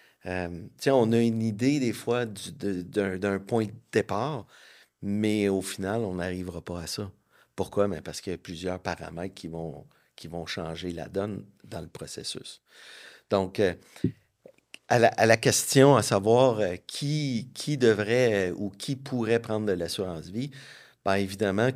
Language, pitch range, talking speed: French, 90-110 Hz, 175 wpm